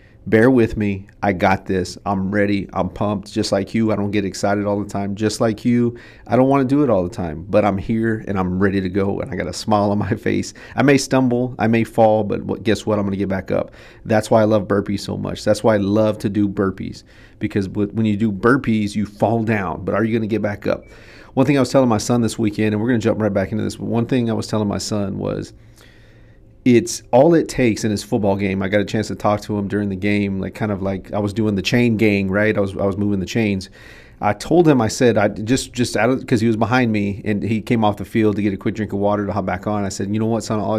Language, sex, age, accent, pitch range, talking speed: English, male, 40-59, American, 100-115 Hz, 285 wpm